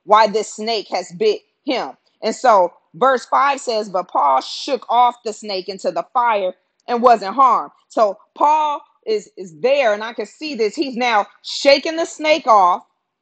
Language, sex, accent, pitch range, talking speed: English, female, American, 220-295 Hz, 175 wpm